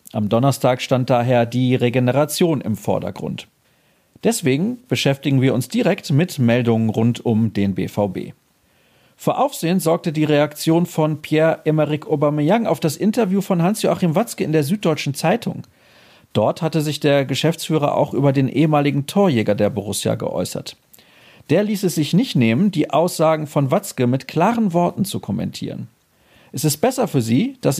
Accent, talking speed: German, 155 wpm